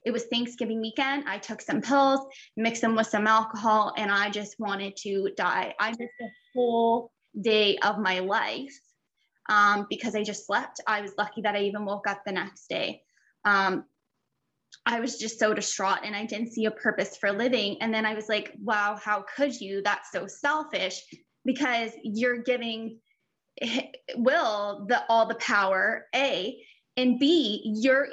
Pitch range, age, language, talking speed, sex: 210-255 Hz, 10-29, English, 170 wpm, female